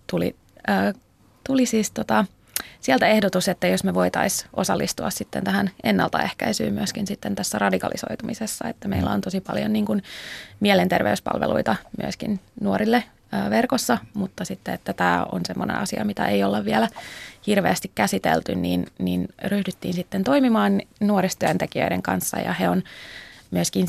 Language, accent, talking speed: Finnish, native, 140 wpm